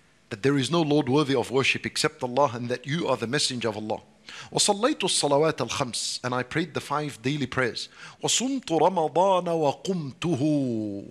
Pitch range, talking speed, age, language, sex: 135-175 Hz, 140 wpm, 50-69, English, male